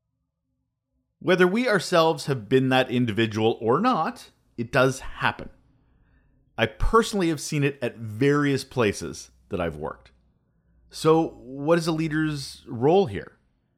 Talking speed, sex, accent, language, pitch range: 130 wpm, male, American, English, 105-160 Hz